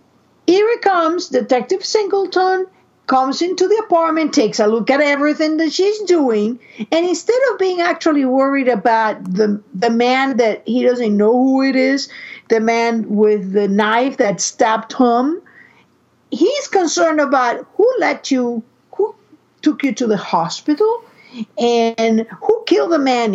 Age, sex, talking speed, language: 50-69, female, 150 wpm, English